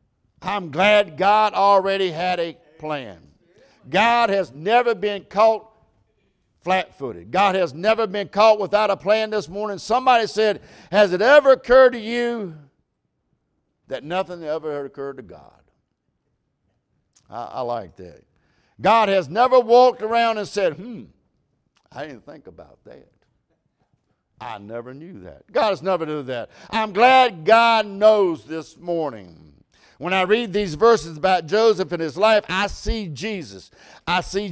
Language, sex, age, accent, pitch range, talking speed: English, male, 60-79, American, 180-220 Hz, 145 wpm